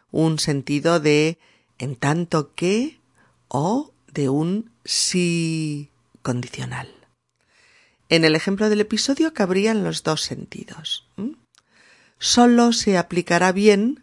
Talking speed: 105 wpm